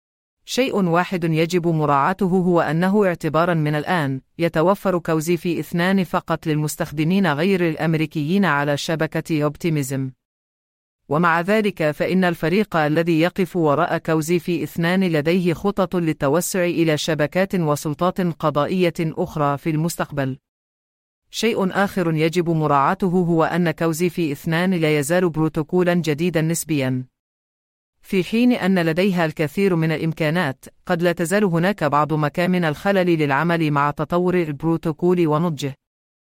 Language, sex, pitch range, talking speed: English, female, 150-180 Hz, 115 wpm